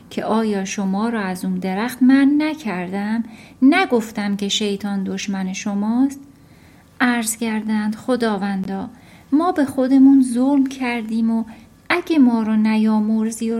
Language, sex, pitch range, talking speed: Persian, female, 200-275 Hz, 125 wpm